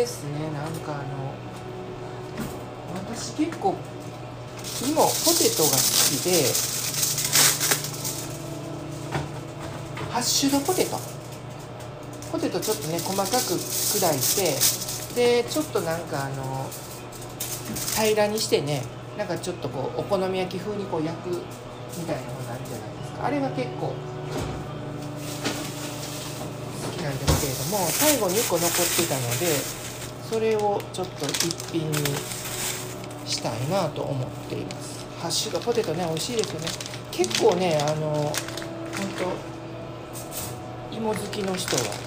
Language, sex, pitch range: Japanese, male, 130-175 Hz